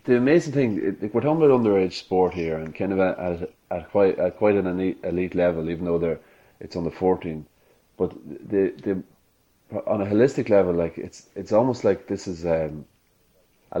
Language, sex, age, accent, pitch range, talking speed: English, male, 30-49, Irish, 80-95 Hz, 185 wpm